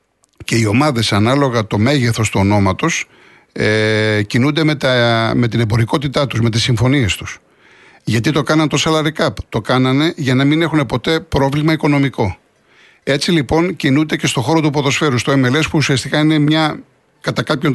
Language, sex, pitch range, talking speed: Greek, male, 120-155 Hz, 170 wpm